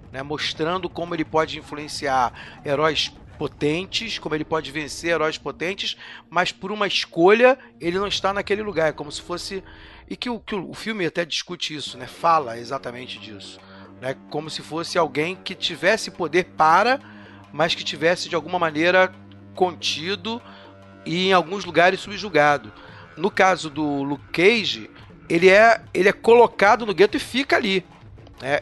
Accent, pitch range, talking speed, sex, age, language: Brazilian, 145-195 Hz, 155 wpm, male, 40-59, Portuguese